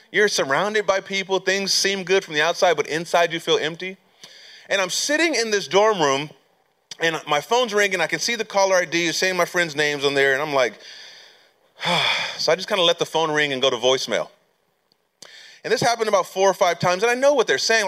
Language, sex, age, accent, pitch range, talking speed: English, male, 30-49, American, 150-230 Hz, 230 wpm